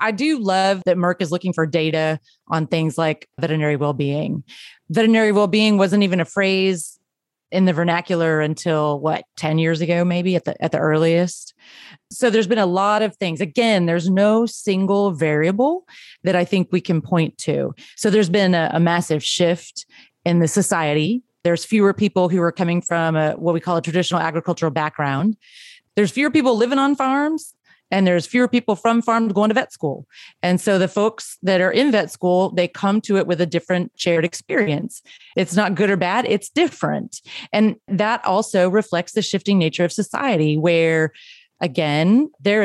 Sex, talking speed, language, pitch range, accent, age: female, 180 wpm, English, 170-210 Hz, American, 30-49